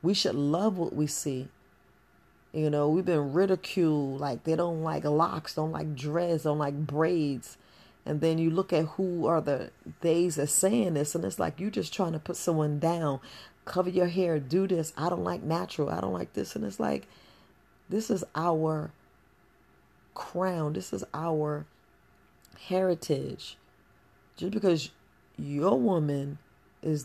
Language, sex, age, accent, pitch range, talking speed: English, female, 40-59, American, 145-170 Hz, 165 wpm